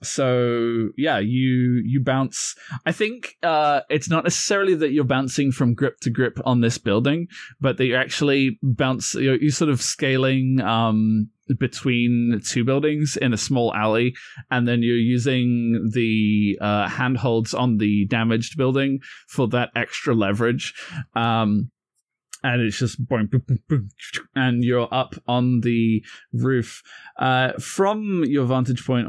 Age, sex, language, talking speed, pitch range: 20-39, male, English, 155 wpm, 110-135 Hz